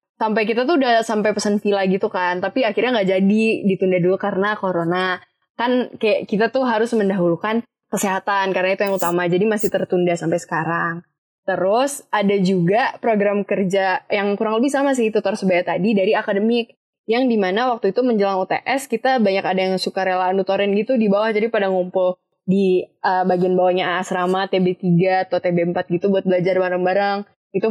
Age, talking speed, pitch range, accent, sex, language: 20-39, 170 wpm, 185-225 Hz, native, female, Indonesian